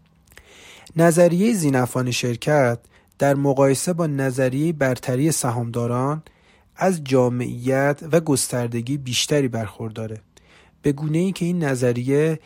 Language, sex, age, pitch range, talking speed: Persian, male, 40-59, 125-150 Hz, 95 wpm